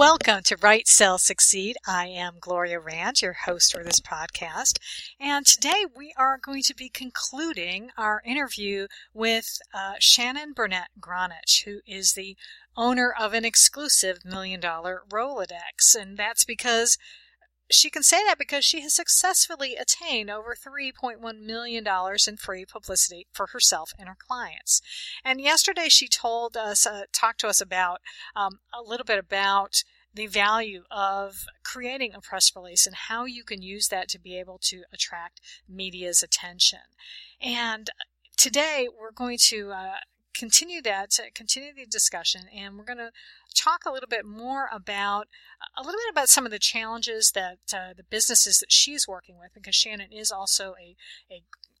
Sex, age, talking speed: female, 50-69, 165 wpm